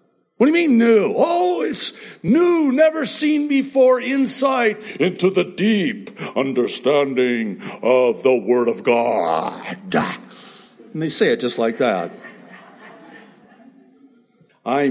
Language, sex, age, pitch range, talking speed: English, male, 60-79, 160-255 Hz, 115 wpm